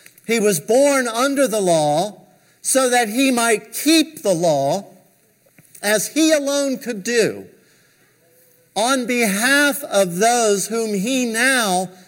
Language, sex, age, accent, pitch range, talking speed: English, male, 50-69, American, 200-270 Hz, 125 wpm